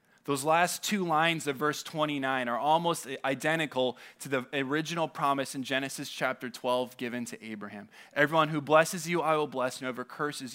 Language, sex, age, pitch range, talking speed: English, male, 20-39, 135-200 Hz, 175 wpm